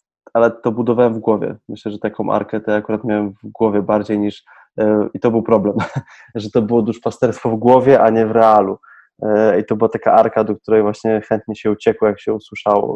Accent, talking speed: native, 220 wpm